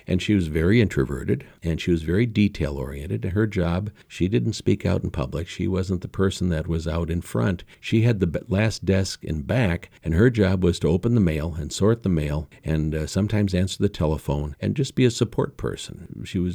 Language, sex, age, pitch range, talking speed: English, male, 50-69, 85-110 Hz, 215 wpm